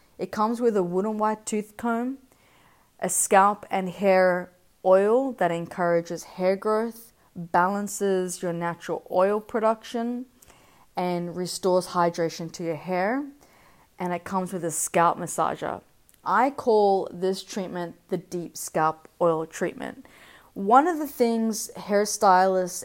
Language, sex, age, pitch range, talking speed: English, female, 20-39, 170-210 Hz, 130 wpm